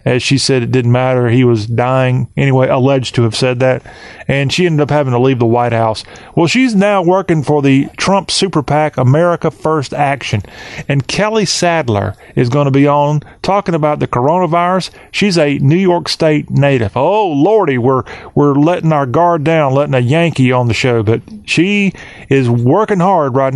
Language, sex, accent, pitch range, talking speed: English, male, American, 125-155 Hz, 190 wpm